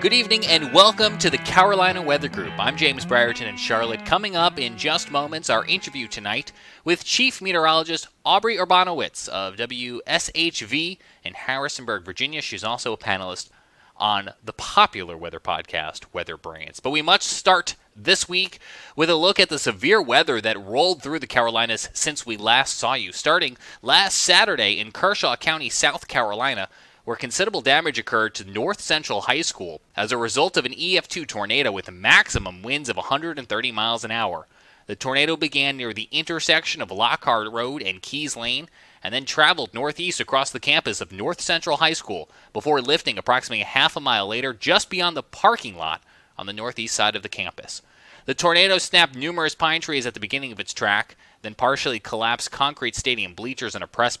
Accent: American